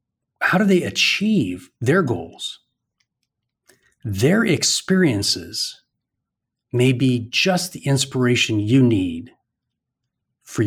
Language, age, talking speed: English, 40-59, 90 wpm